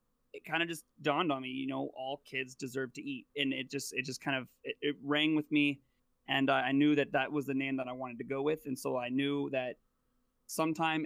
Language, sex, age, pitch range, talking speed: English, male, 20-39, 130-150 Hz, 255 wpm